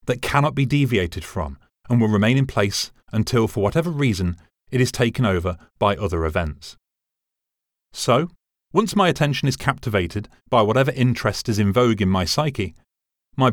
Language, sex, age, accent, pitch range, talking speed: English, male, 30-49, British, 95-130 Hz, 165 wpm